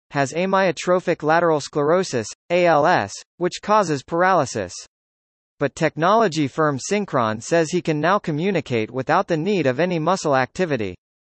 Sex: male